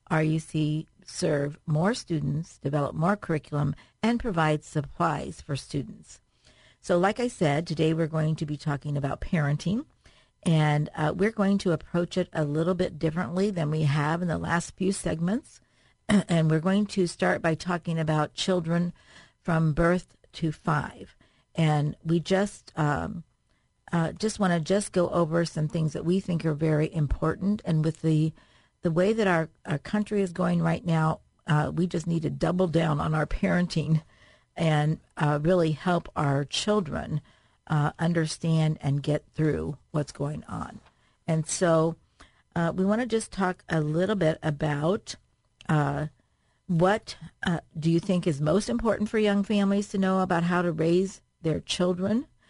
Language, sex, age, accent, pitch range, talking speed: English, female, 50-69, American, 155-185 Hz, 160 wpm